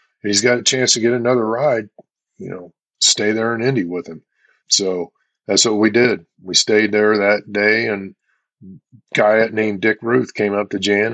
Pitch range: 95-105 Hz